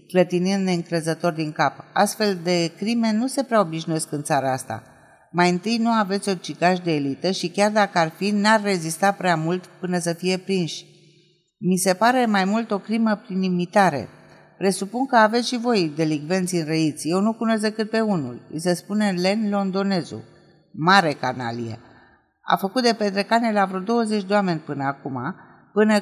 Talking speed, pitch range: 175 wpm, 160-205 Hz